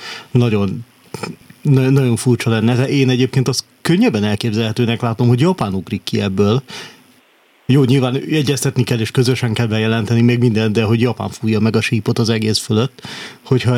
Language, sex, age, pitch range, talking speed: Hungarian, male, 30-49, 110-130 Hz, 165 wpm